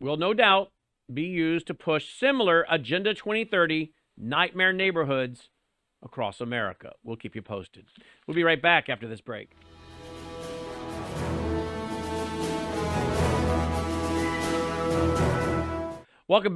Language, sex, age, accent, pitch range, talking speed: English, male, 50-69, American, 120-175 Hz, 95 wpm